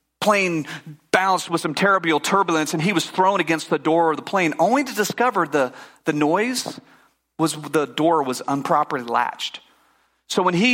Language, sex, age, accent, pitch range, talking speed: English, male, 40-59, American, 165-210 Hz, 175 wpm